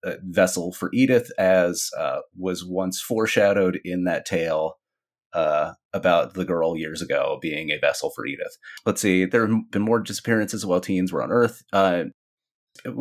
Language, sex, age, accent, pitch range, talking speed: English, male, 30-49, American, 90-120 Hz, 165 wpm